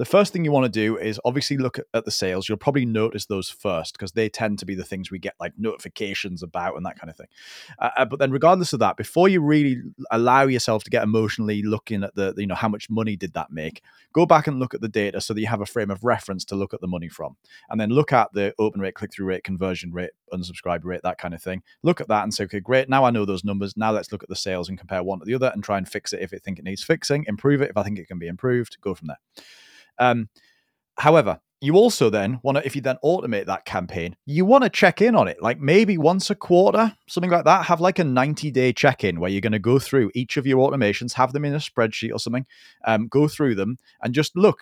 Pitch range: 100-140 Hz